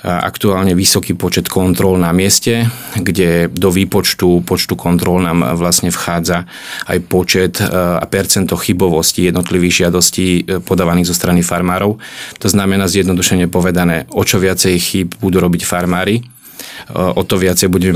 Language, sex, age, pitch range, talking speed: Slovak, male, 30-49, 90-100 Hz, 135 wpm